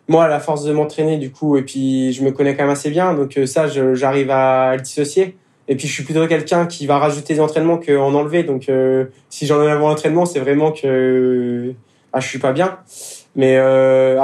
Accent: French